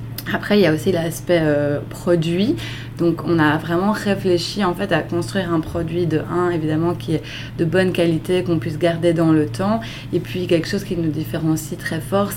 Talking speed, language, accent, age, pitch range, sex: 205 wpm, French, French, 20-39, 155-180 Hz, female